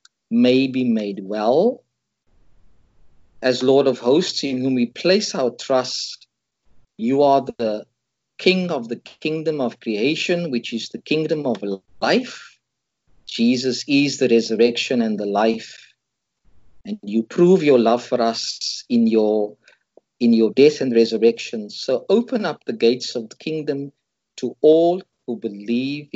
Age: 50-69